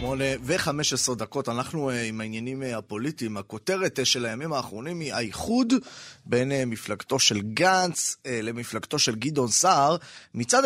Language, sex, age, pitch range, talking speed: Hebrew, male, 20-39, 125-190 Hz, 120 wpm